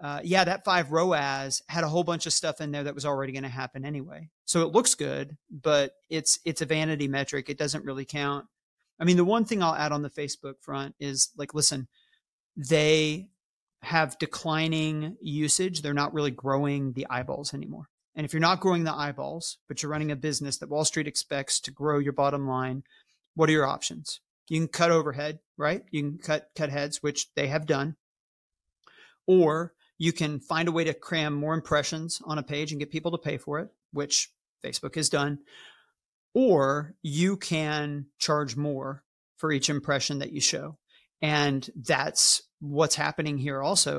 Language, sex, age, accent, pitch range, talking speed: English, male, 40-59, American, 145-160 Hz, 190 wpm